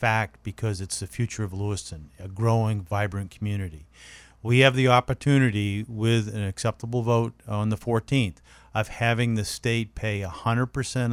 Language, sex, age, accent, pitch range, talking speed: English, male, 40-59, American, 95-120 Hz, 150 wpm